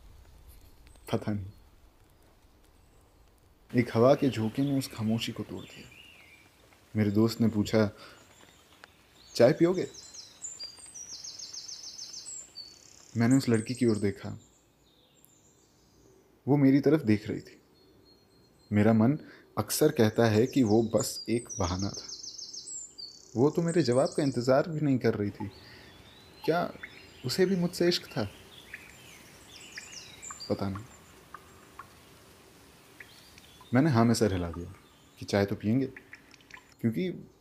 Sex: male